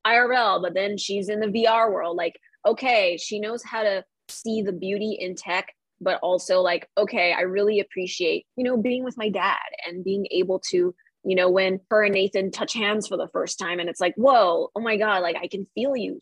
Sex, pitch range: female, 195-255 Hz